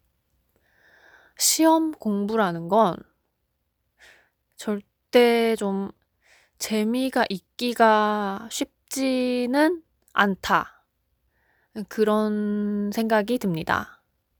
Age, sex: 20-39, female